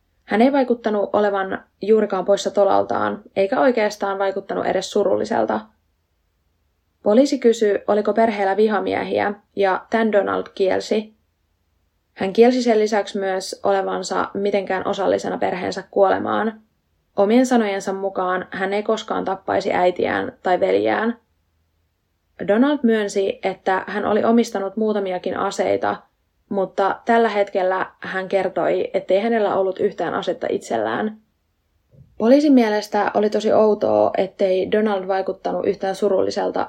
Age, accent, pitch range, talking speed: 20-39, native, 185-215 Hz, 115 wpm